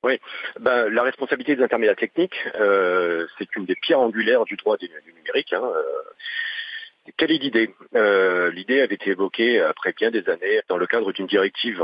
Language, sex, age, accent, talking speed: French, male, 40-59, French, 190 wpm